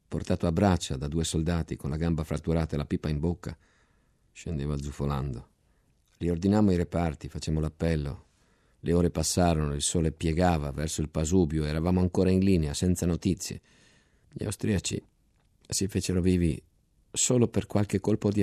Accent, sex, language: native, male, Italian